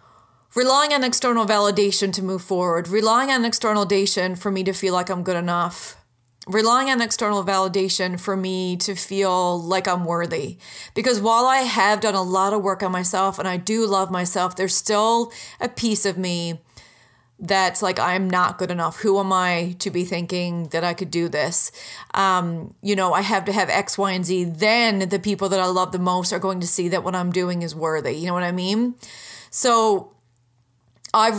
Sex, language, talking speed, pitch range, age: female, English, 200 wpm, 180-210 Hz, 30-49